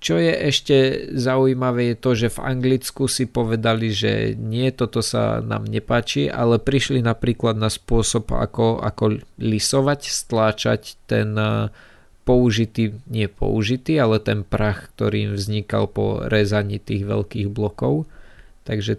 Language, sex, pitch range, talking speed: Slovak, male, 105-120 Hz, 135 wpm